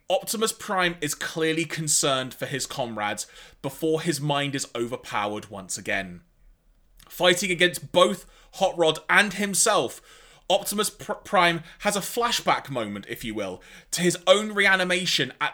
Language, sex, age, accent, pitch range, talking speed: English, male, 20-39, British, 140-190 Hz, 140 wpm